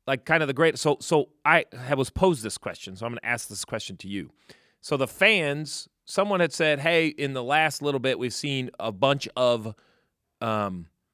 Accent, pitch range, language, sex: American, 115-150 Hz, English, male